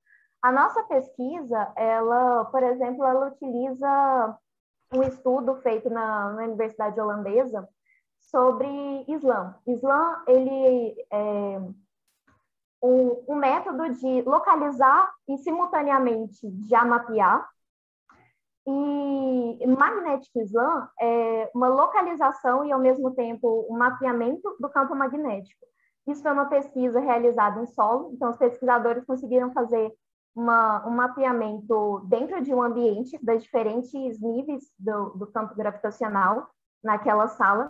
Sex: female